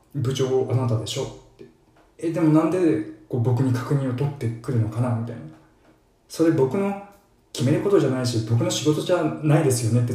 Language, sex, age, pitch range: Japanese, male, 20-39, 110-130 Hz